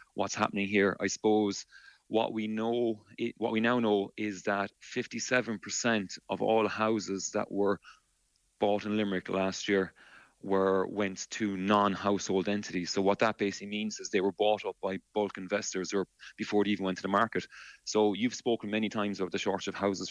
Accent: Irish